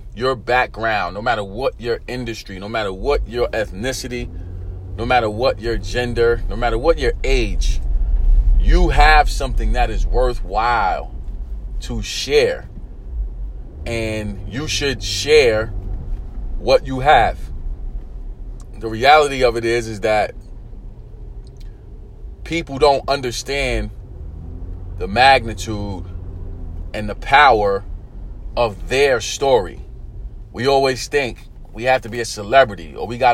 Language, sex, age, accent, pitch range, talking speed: English, male, 30-49, American, 95-125 Hz, 120 wpm